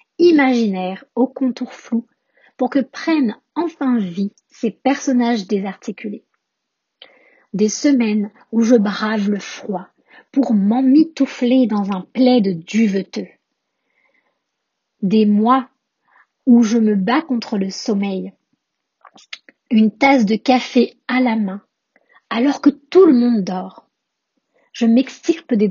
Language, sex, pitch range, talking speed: French, female, 220-280 Hz, 120 wpm